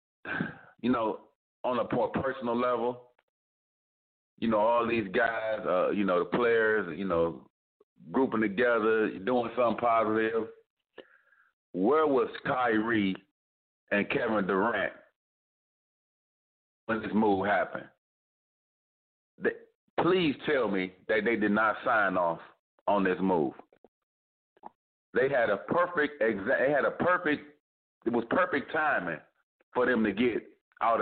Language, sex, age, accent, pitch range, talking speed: English, male, 40-59, American, 110-145 Hz, 125 wpm